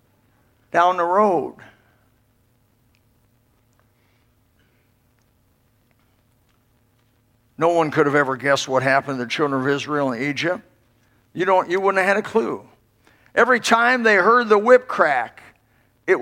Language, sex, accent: English, male, American